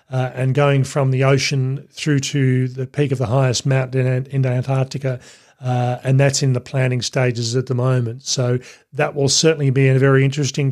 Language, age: English, 40-59